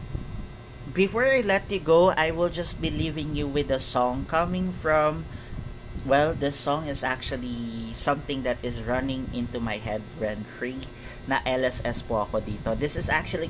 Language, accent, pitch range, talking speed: English, Filipino, 120-155 Hz, 170 wpm